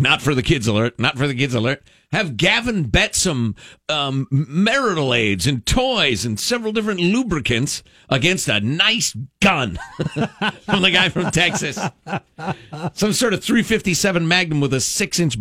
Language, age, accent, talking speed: English, 50-69, American, 155 wpm